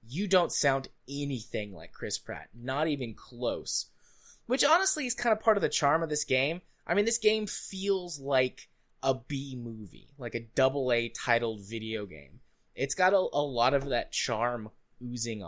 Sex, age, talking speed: male, 20-39, 180 wpm